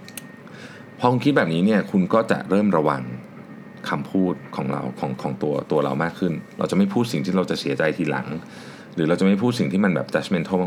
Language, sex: Thai, male